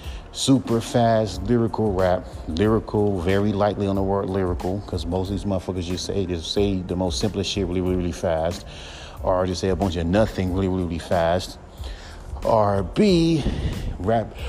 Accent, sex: American, male